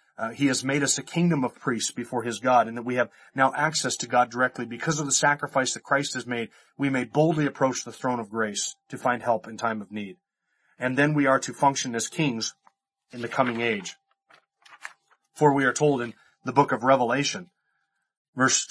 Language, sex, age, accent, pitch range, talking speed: English, male, 30-49, American, 110-135 Hz, 210 wpm